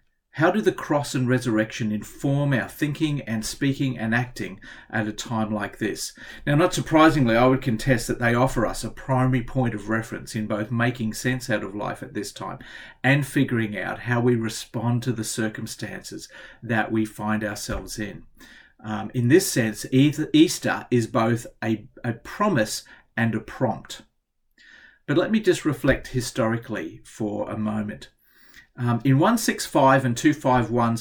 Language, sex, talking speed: English, male, 165 wpm